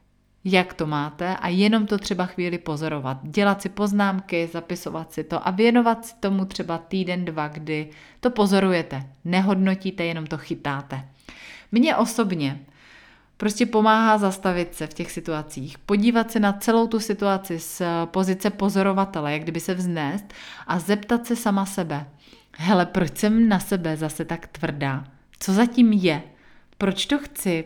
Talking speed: 150 wpm